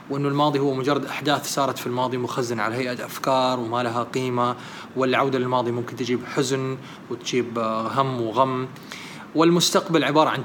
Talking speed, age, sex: 150 wpm, 20-39, male